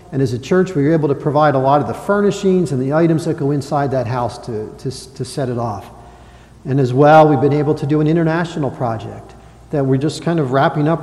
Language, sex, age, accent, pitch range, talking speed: English, male, 50-69, American, 140-175 Hz, 245 wpm